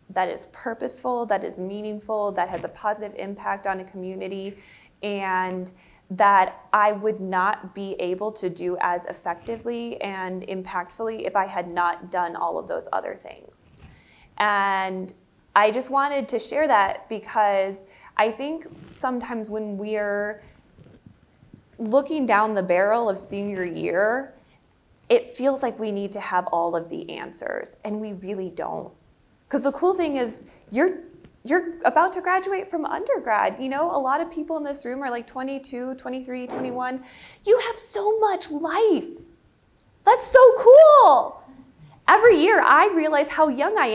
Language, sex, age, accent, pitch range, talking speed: English, female, 20-39, American, 200-295 Hz, 155 wpm